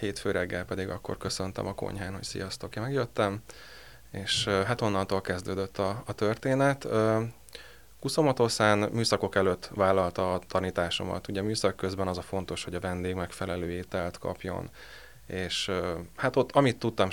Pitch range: 90-105 Hz